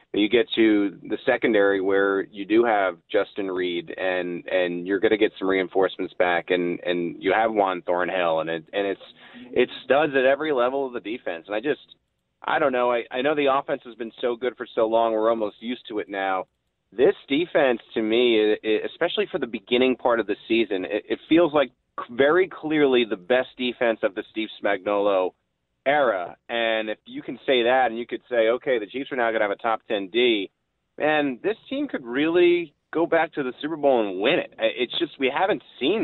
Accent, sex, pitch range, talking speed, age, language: American, male, 105-140 Hz, 215 wpm, 30-49, English